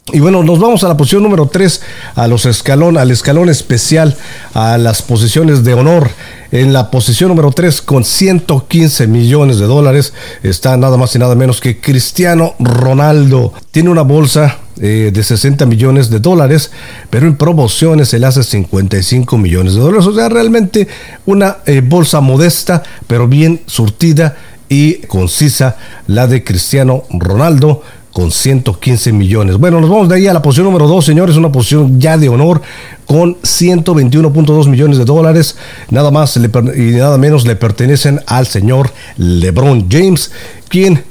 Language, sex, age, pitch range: Spanish, male, 50-69, 120-160 Hz